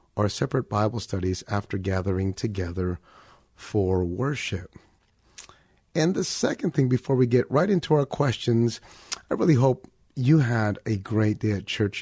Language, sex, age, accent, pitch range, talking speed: English, male, 30-49, American, 105-130 Hz, 150 wpm